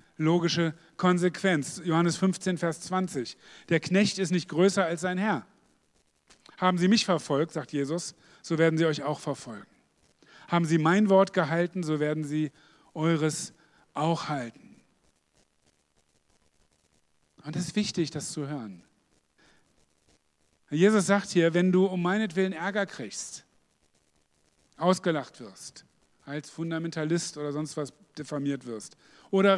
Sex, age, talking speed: male, 40-59, 130 wpm